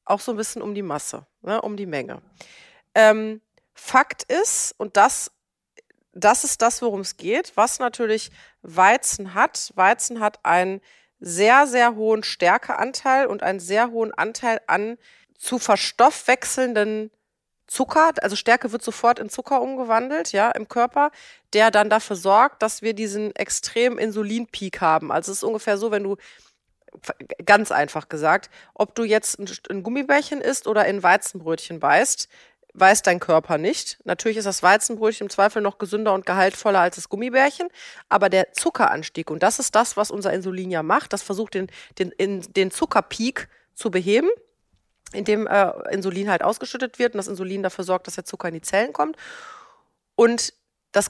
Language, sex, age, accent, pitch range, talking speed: German, female, 30-49, German, 195-245 Hz, 160 wpm